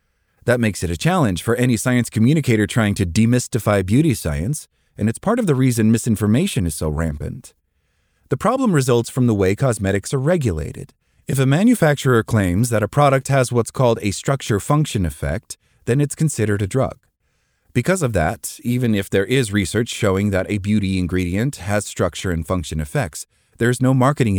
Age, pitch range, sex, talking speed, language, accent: 30-49, 90-125 Hz, male, 180 wpm, English, American